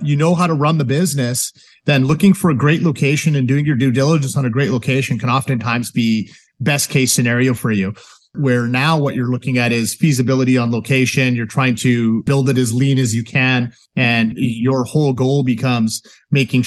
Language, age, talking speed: English, 30-49, 200 wpm